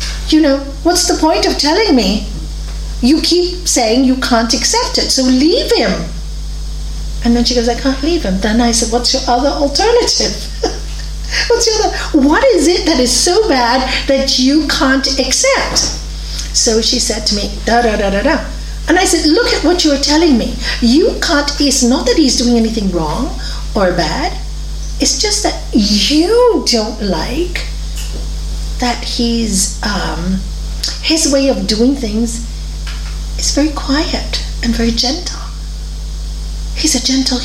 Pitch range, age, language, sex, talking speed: 230-310 Hz, 40-59, English, female, 160 wpm